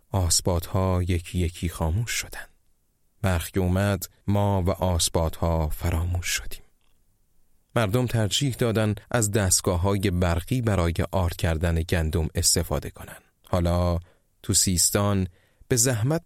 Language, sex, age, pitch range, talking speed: Persian, male, 30-49, 85-105 Hz, 110 wpm